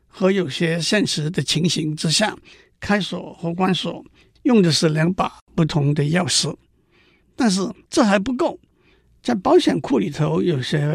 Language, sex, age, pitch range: Chinese, male, 60-79, 160-225 Hz